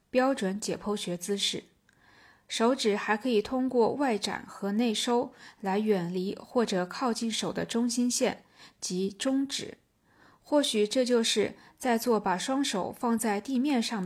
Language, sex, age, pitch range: Chinese, female, 20-39, 195-245 Hz